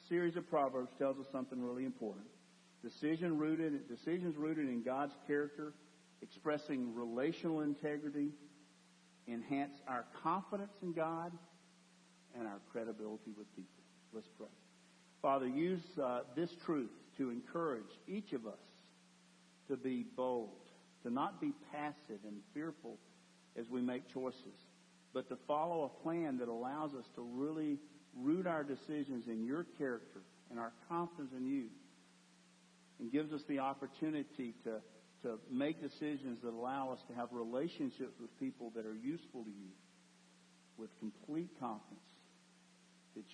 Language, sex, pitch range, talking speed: English, male, 110-155 Hz, 135 wpm